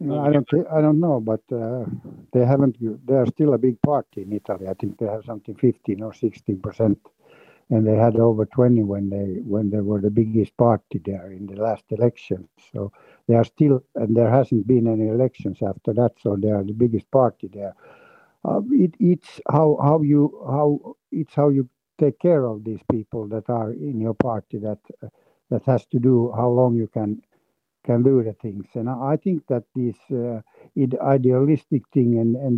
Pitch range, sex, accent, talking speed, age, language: 110-140 Hz, male, native, 200 wpm, 60-79, Finnish